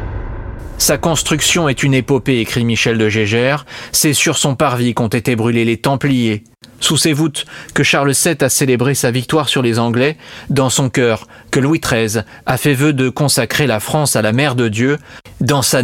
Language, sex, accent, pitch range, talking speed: French, male, French, 115-145 Hz, 195 wpm